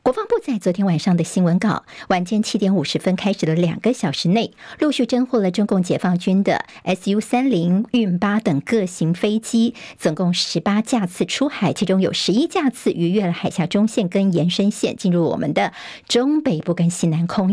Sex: male